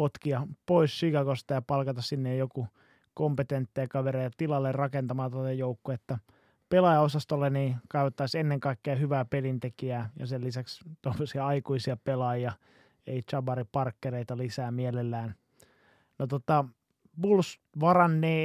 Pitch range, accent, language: 125-145 Hz, native, Finnish